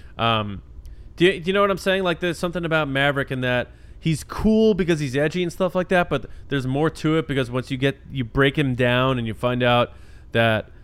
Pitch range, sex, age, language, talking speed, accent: 115-140 Hz, male, 20-39, English, 240 wpm, American